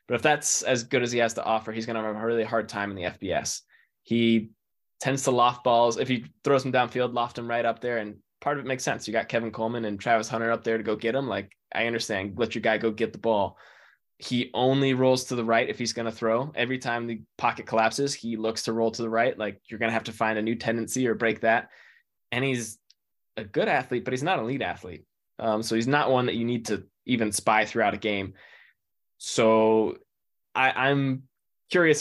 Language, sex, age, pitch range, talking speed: English, male, 20-39, 110-125 Hz, 245 wpm